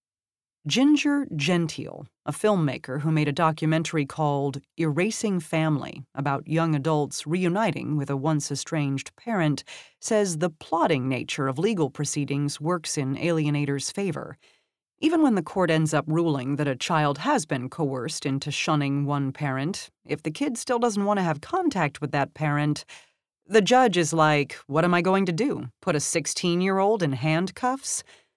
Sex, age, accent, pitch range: female, 30-49, American, 145-190 Hz